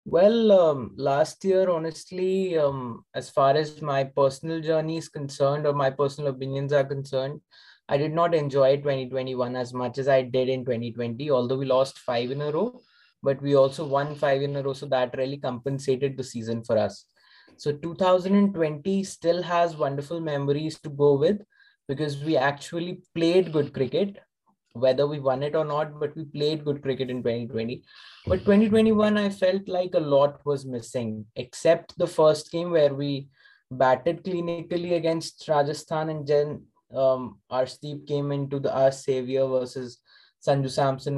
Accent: Indian